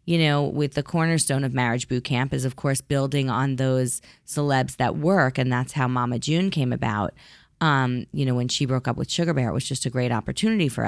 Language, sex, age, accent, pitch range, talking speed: English, female, 30-49, American, 130-165 Hz, 230 wpm